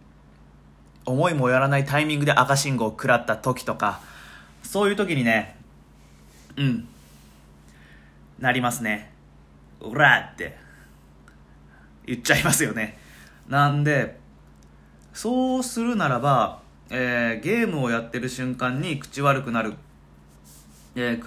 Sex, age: male, 20-39